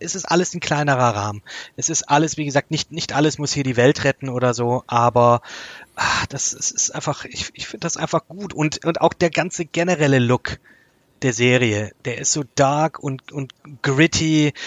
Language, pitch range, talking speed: German, 125-155 Hz, 195 wpm